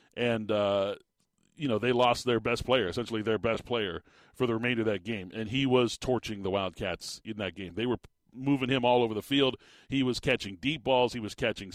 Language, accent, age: English, American, 40-59